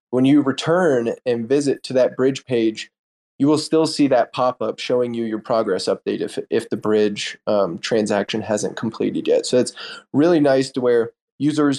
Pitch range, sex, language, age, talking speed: 110-135 Hz, male, English, 20-39, 185 wpm